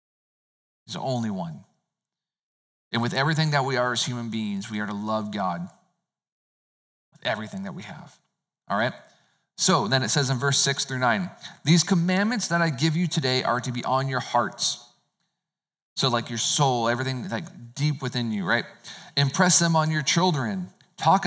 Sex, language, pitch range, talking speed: male, English, 125-160 Hz, 180 wpm